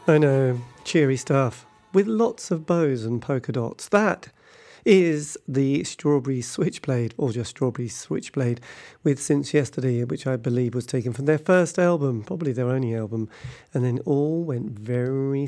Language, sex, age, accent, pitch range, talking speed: English, male, 40-59, British, 125-155 Hz, 160 wpm